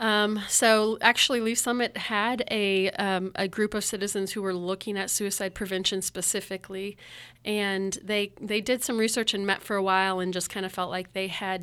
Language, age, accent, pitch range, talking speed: English, 30-49, American, 185-205 Hz, 195 wpm